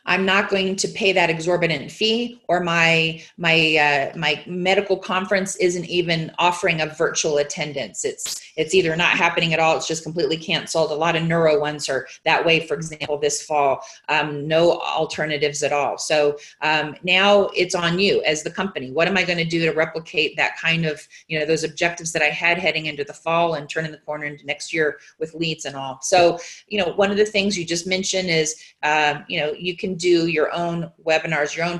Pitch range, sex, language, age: 155-180 Hz, female, English, 30-49